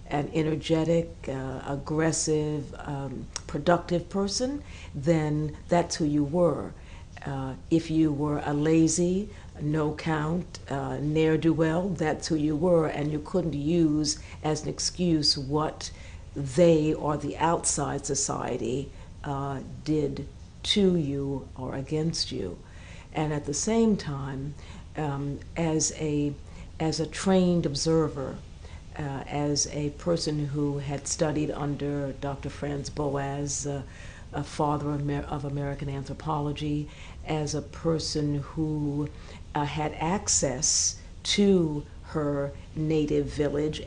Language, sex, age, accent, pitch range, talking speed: English, female, 60-79, American, 140-160 Hz, 120 wpm